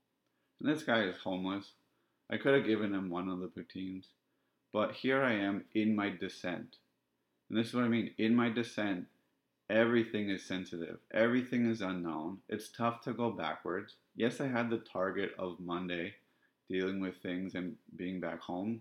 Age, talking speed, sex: 30-49, 170 wpm, male